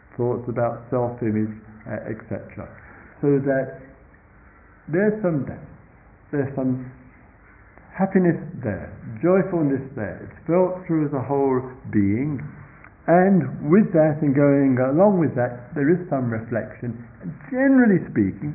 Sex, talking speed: male, 115 wpm